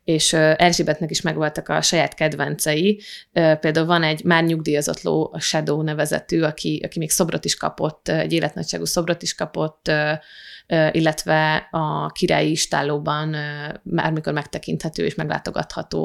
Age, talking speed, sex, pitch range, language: 30-49, 125 wpm, female, 155-175 Hz, Hungarian